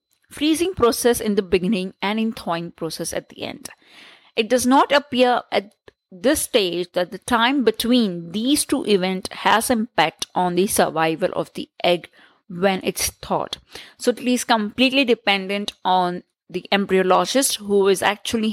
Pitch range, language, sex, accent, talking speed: 185-250 Hz, English, female, Indian, 155 wpm